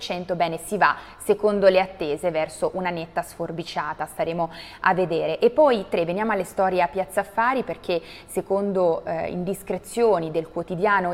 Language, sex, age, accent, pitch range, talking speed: Italian, female, 20-39, native, 170-205 Hz, 150 wpm